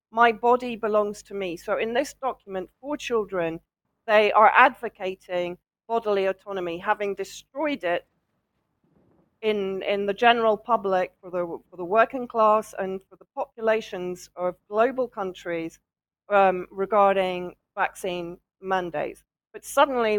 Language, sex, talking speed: English, female, 130 wpm